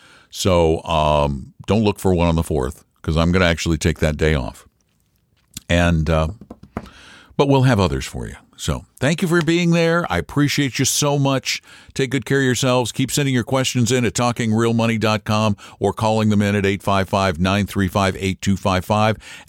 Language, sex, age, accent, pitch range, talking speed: English, male, 60-79, American, 85-125 Hz, 170 wpm